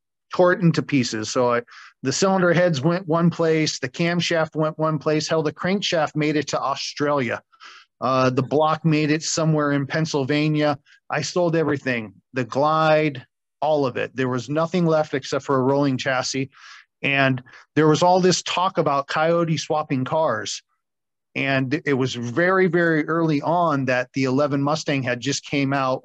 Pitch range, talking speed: 125-155 Hz, 170 wpm